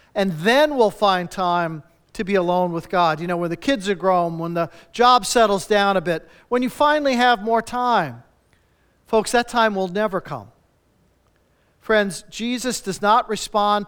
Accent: American